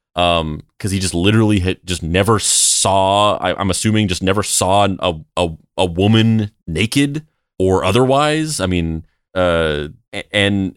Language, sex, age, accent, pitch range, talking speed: English, male, 30-49, American, 85-105 Hz, 130 wpm